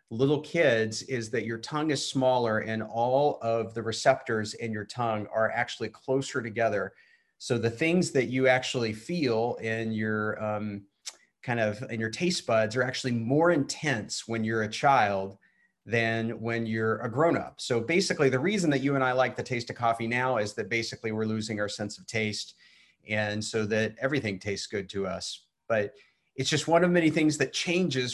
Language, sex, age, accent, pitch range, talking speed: English, male, 30-49, American, 110-130 Hz, 190 wpm